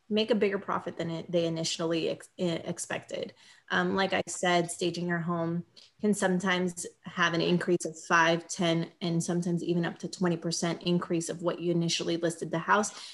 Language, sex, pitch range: English, female, 175-205 Hz